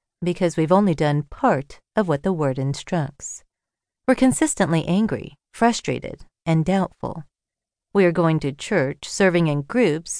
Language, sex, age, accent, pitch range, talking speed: English, female, 40-59, American, 155-220 Hz, 140 wpm